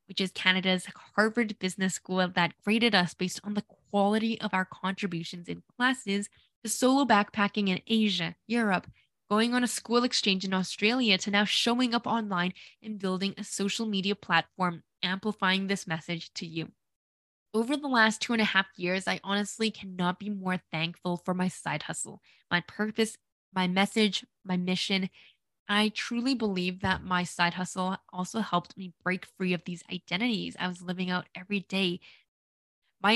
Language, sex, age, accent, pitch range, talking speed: English, female, 10-29, American, 180-220 Hz, 170 wpm